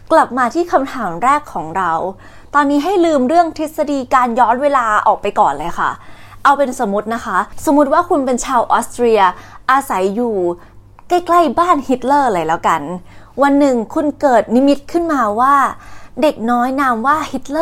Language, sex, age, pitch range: Thai, female, 20-39, 220-295 Hz